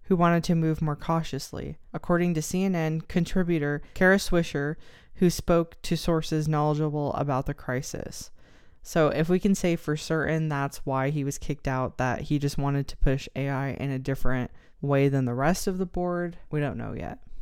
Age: 20-39